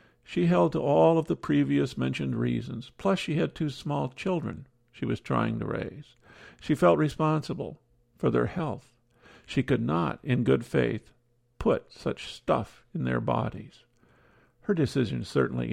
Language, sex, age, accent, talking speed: English, male, 50-69, American, 155 wpm